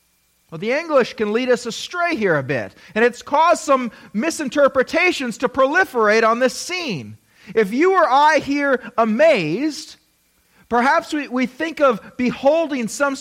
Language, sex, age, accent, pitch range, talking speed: English, male, 40-59, American, 225-300 Hz, 150 wpm